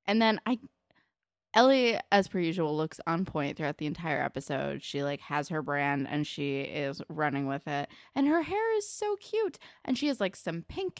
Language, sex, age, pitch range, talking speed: English, female, 20-39, 150-245 Hz, 200 wpm